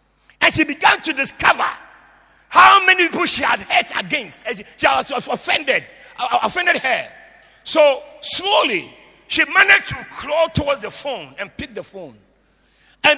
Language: English